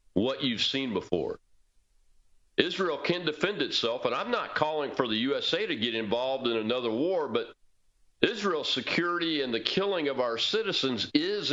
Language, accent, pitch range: English, American, 110-160 Hz